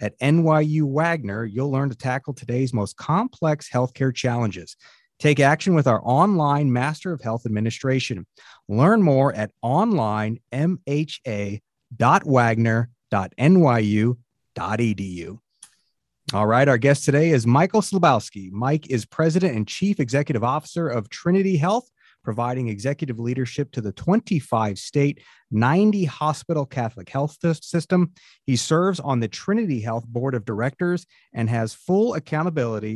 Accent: American